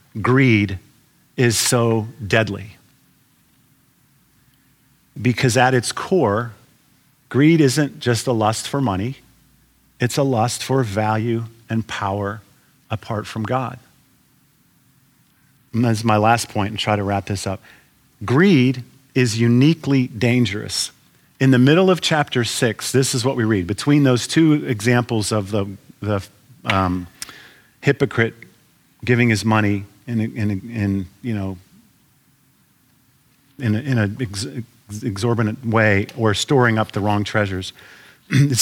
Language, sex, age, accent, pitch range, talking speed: English, male, 50-69, American, 105-130 Hz, 130 wpm